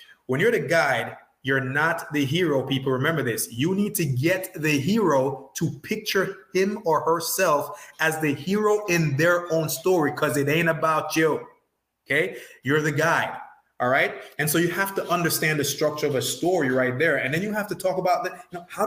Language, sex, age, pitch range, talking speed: English, male, 30-49, 125-170 Hz, 195 wpm